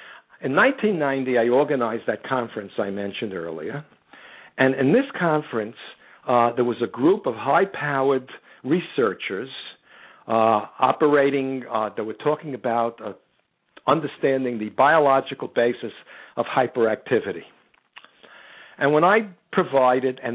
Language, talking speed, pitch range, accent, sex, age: English, 120 wpm, 120-160 Hz, American, male, 60-79